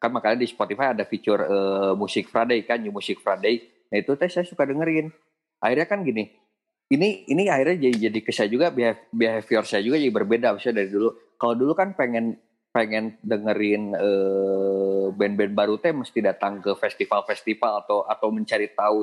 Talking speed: 175 wpm